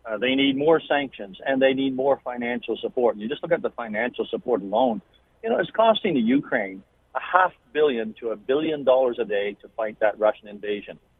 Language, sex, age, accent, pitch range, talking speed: English, male, 50-69, American, 120-145 Hz, 210 wpm